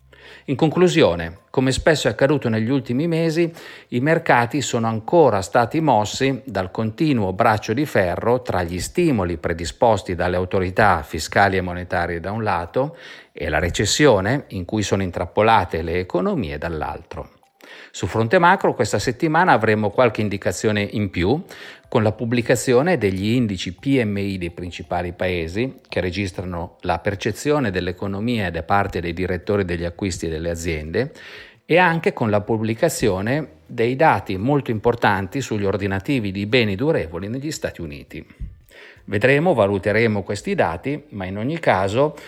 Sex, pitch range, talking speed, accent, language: male, 95-130 Hz, 140 wpm, native, Italian